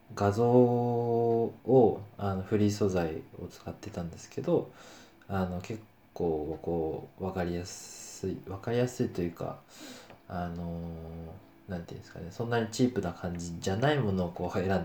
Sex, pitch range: male, 85-115 Hz